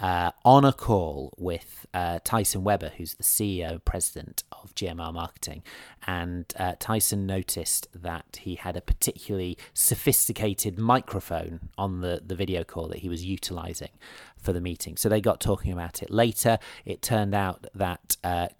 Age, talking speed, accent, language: 30-49, 160 wpm, British, English